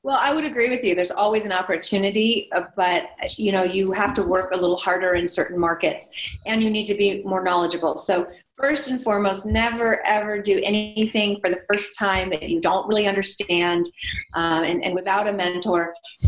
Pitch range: 185-225 Hz